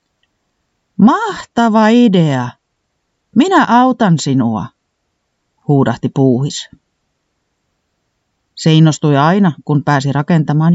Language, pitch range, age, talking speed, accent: Finnish, 135-210 Hz, 40-59, 75 wpm, native